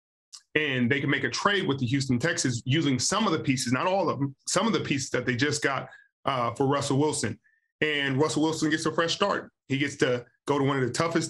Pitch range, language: 125-155 Hz, English